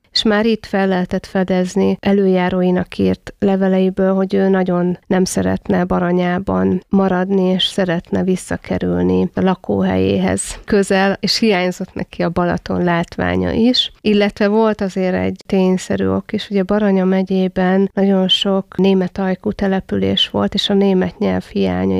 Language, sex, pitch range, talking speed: Hungarian, female, 175-200 Hz, 140 wpm